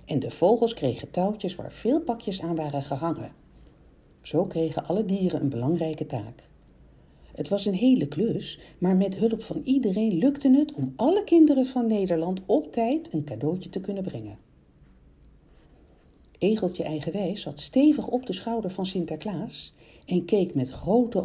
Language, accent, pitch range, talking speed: Dutch, Dutch, 150-230 Hz, 155 wpm